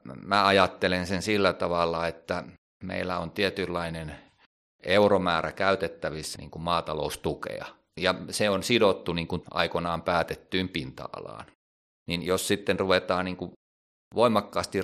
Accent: native